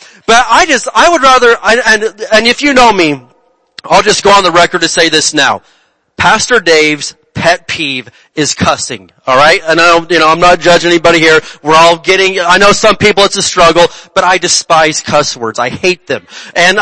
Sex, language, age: male, English, 30-49